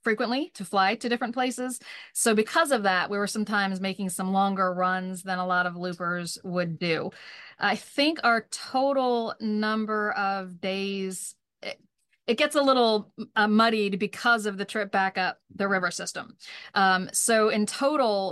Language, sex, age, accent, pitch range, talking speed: English, female, 40-59, American, 175-210 Hz, 165 wpm